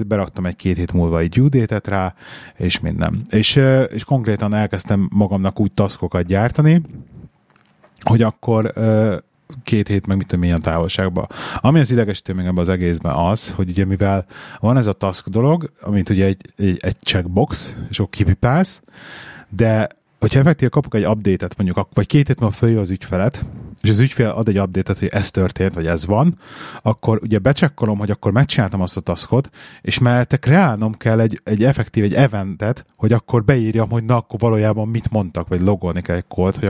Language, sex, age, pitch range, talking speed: Hungarian, male, 30-49, 95-125 Hz, 175 wpm